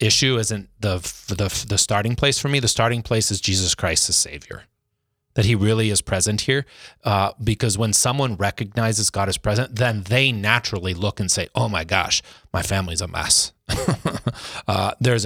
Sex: male